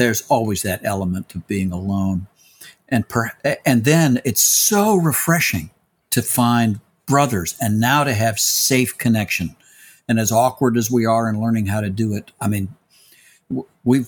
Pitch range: 105-135 Hz